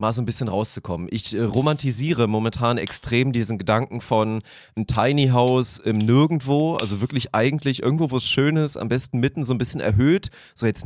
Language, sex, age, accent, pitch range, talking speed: German, male, 30-49, German, 105-130 Hz, 195 wpm